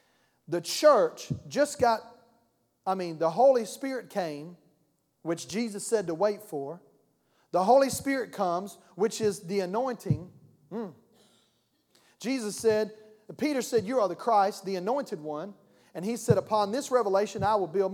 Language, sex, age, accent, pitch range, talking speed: English, male, 40-59, American, 185-255 Hz, 150 wpm